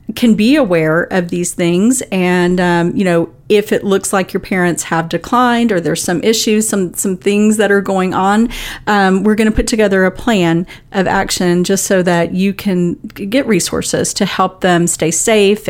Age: 40-59